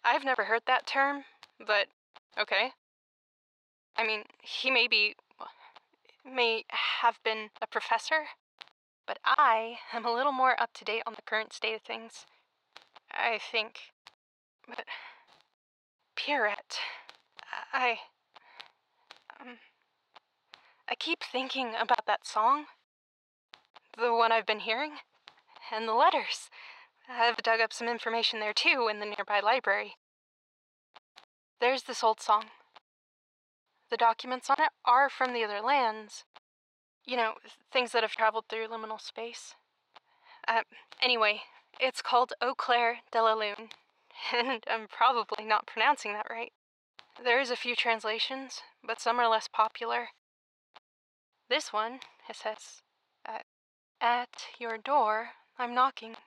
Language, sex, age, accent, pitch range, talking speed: English, female, 10-29, American, 220-260 Hz, 130 wpm